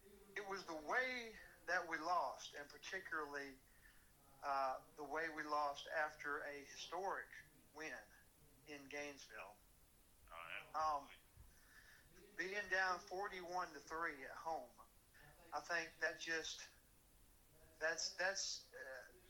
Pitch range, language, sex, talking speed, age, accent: 150-195 Hz, English, male, 105 wpm, 50-69, American